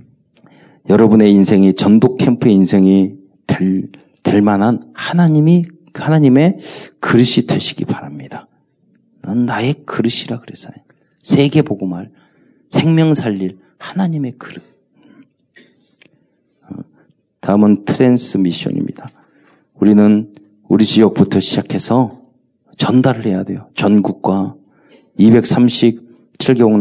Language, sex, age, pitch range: Korean, male, 40-59, 100-140 Hz